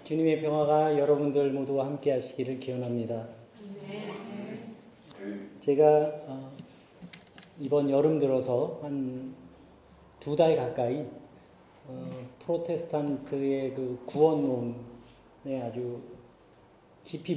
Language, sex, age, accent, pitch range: Korean, male, 30-49, native, 130-160 Hz